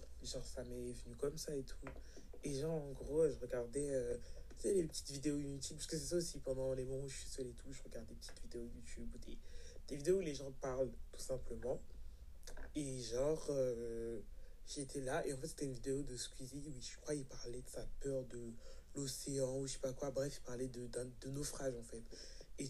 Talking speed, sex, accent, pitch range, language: 235 wpm, male, French, 120-145 Hz, French